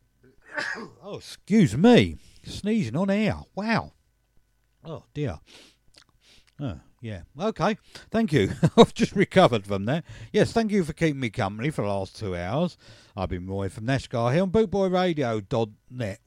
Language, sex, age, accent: English, male, 50-69, British